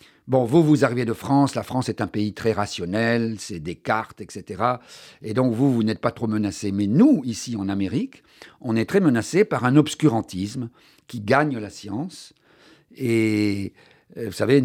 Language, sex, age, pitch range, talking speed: French, male, 50-69, 110-145 Hz, 175 wpm